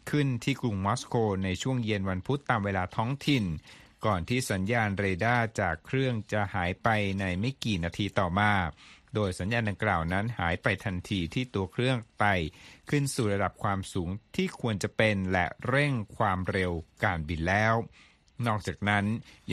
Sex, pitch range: male, 95-115 Hz